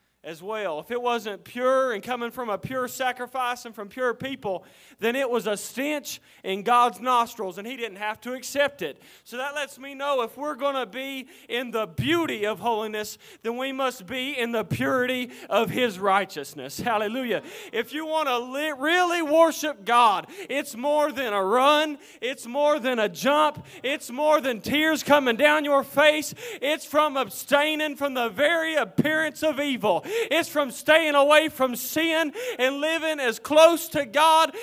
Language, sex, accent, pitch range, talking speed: English, male, American, 235-295 Hz, 180 wpm